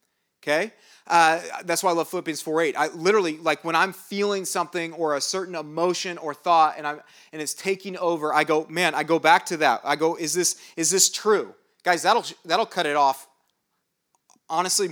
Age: 30-49